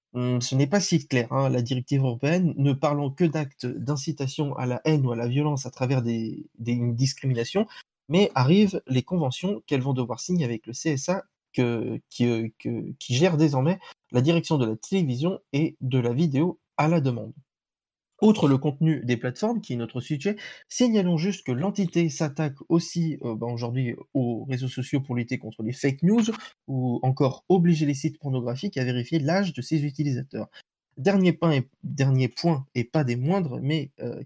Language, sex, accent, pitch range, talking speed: French, male, French, 125-170 Hz, 185 wpm